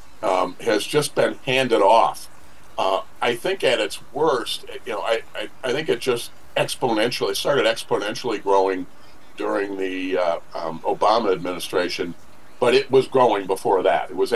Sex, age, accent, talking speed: male, 50-69, American, 160 wpm